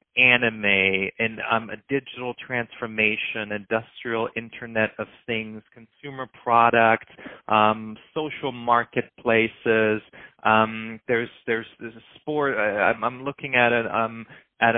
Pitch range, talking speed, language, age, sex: 110-125 Hz, 120 wpm, English, 30-49, male